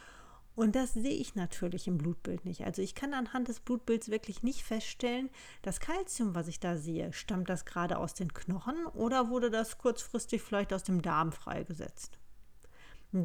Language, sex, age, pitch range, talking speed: German, female, 40-59, 180-225 Hz, 175 wpm